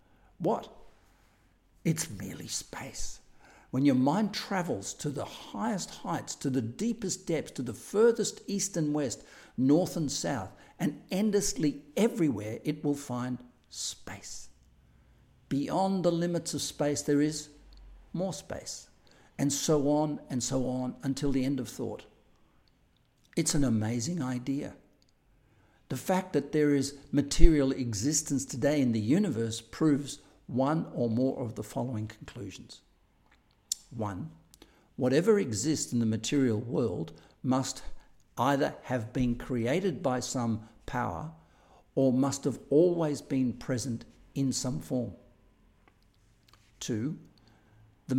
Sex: male